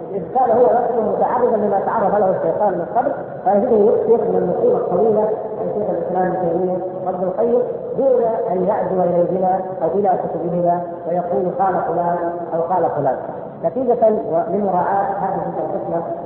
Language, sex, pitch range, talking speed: Arabic, female, 170-220 Hz, 145 wpm